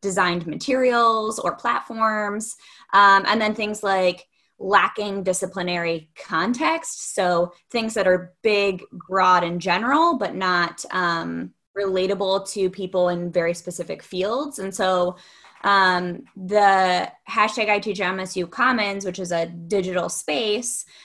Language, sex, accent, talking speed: English, female, American, 120 wpm